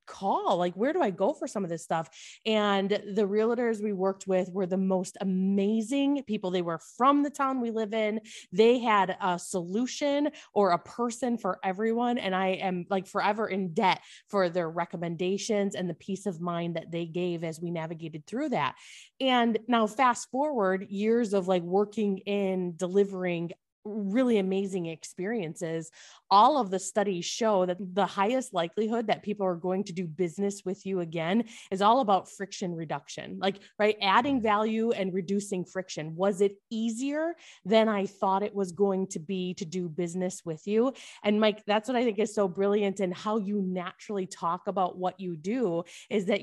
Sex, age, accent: female, 20-39, American